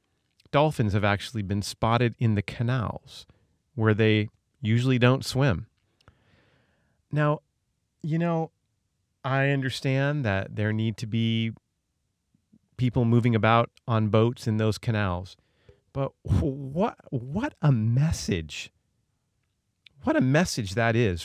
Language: English